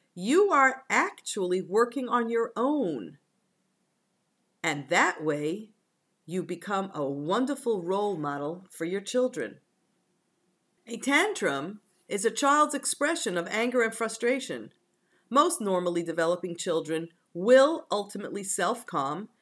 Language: English